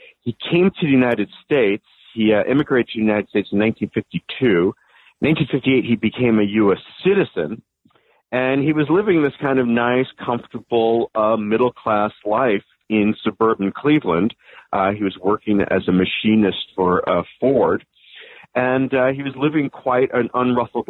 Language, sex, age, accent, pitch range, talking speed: English, male, 50-69, American, 100-125 Hz, 160 wpm